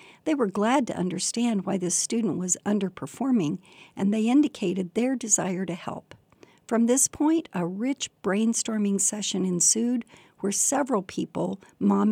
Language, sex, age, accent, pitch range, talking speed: English, female, 60-79, American, 185-240 Hz, 145 wpm